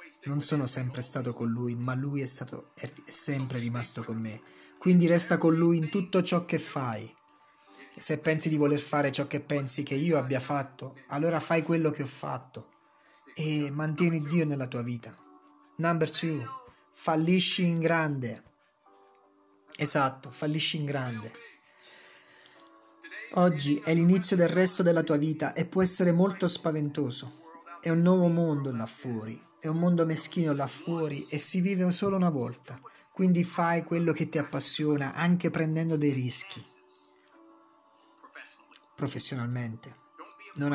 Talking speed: 145 wpm